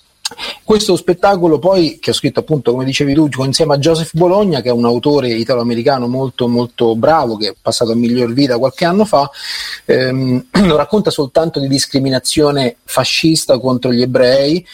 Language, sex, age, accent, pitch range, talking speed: Italian, male, 30-49, native, 130-180 Hz, 165 wpm